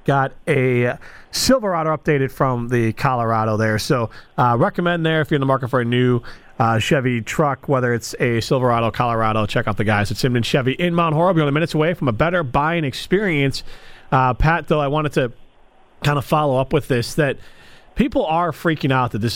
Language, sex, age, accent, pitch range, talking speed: English, male, 40-59, American, 120-155 Hz, 205 wpm